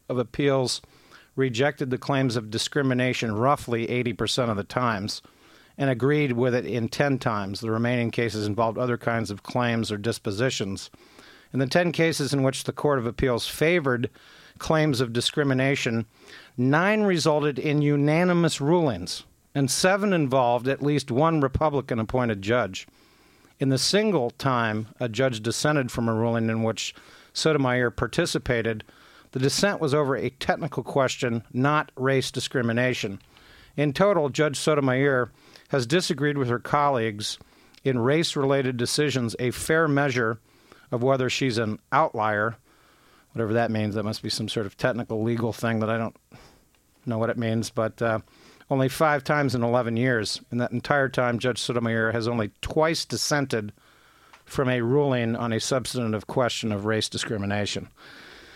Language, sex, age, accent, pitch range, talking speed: English, male, 50-69, American, 115-145 Hz, 150 wpm